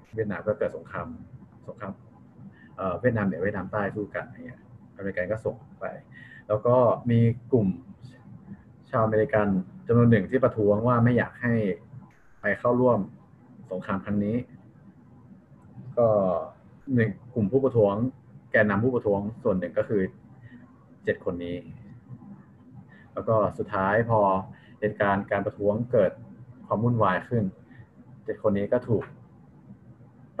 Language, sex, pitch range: Thai, male, 100-125 Hz